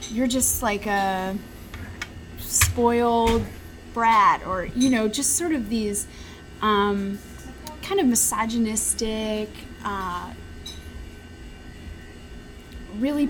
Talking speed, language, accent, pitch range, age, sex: 85 wpm, English, American, 190-230 Hz, 20-39, female